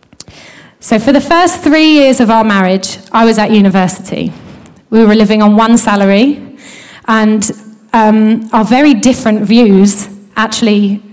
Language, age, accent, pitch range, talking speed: English, 10-29, British, 210-240 Hz, 140 wpm